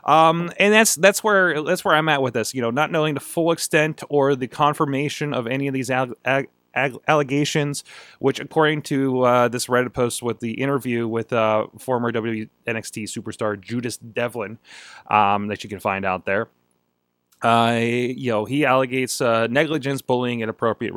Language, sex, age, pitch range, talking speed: English, male, 30-49, 110-140 Hz, 175 wpm